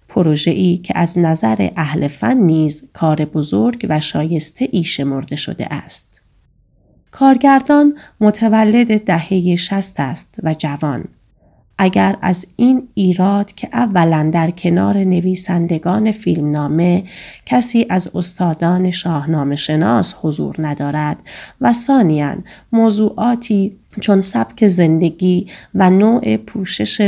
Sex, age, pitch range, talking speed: female, 30-49, 155-205 Hz, 105 wpm